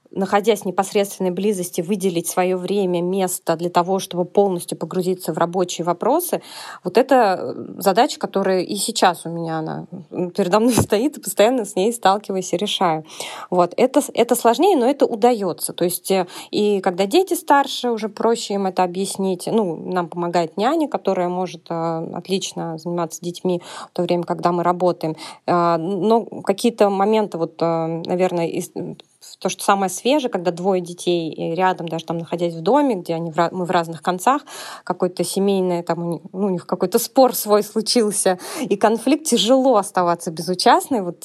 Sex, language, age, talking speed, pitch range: female, Russian, 20-39, 165 wpm, 175-230 Hz